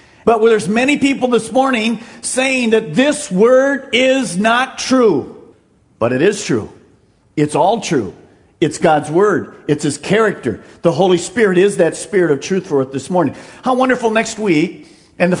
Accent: American